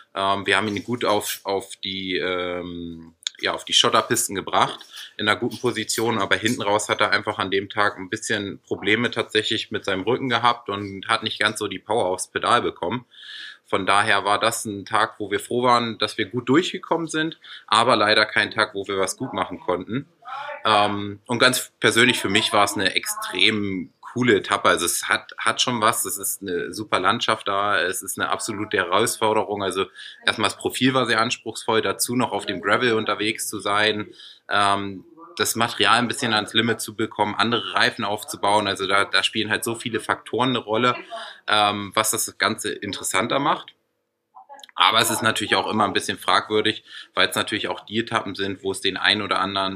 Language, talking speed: German, 195 wpm